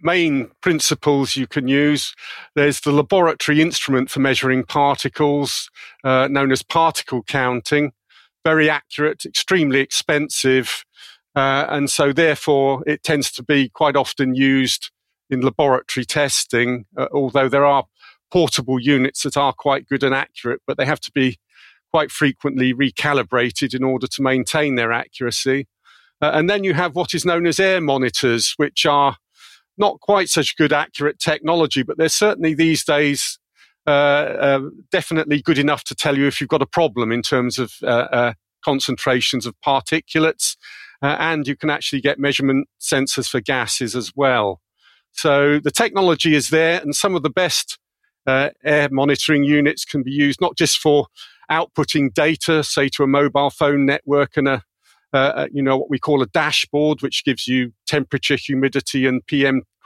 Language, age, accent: English, 50-69, British